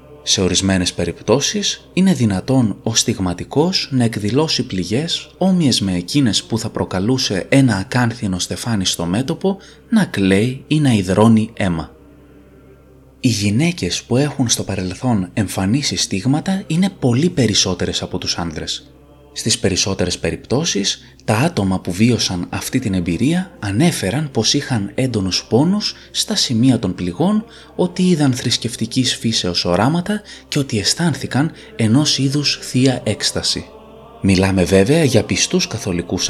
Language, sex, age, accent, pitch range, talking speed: Greek, male, 20-39, native, 95-145 Hz, 125 wpm